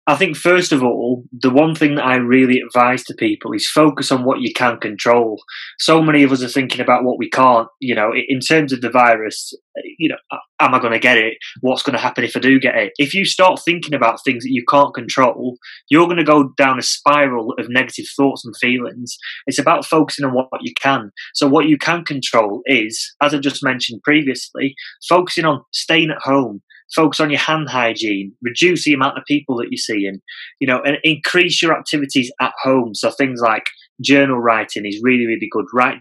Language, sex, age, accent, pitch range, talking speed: English, male, 20-39, British, 120-150 Hz, 220 wpm